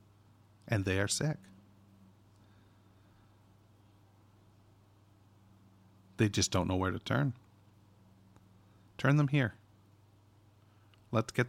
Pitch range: 100-105 Hz